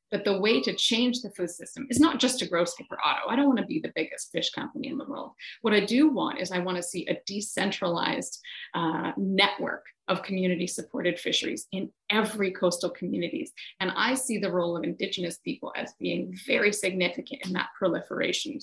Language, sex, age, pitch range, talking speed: English, female, 30-49, 180-225 Hz, 200 wpm